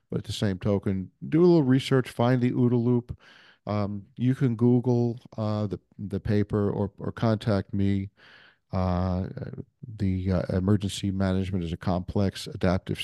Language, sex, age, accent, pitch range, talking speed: English, male, 50-69, American, 95-110 Hz, 155 wpm